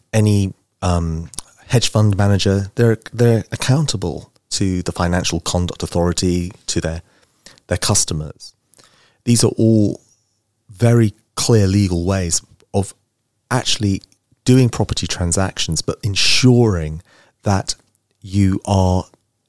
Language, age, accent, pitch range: English, 30-49, British, 90-115 Hz